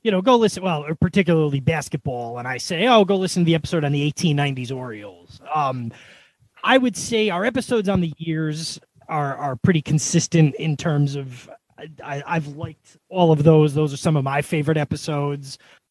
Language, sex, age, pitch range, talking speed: English, male, 30-49, 145-185 Hz, 190 wpm